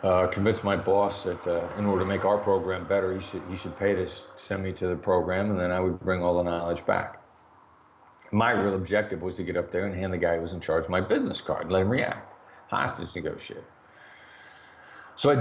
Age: 50-69